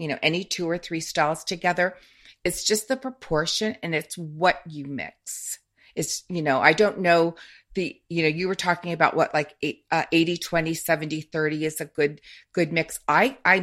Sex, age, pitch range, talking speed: female, 40-59, 145-180 Hz, 200 wpm